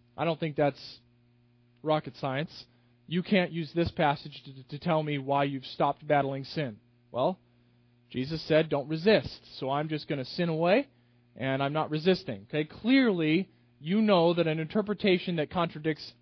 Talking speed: 165 wpm